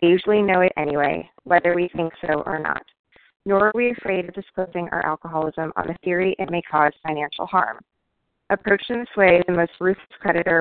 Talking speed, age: 200 wpm, 20-39